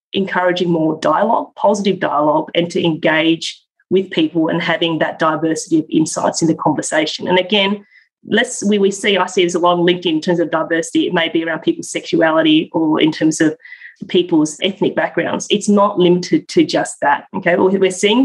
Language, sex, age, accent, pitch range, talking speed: English, female, 20-39, Australian, 170-210 Hz, 185 wpm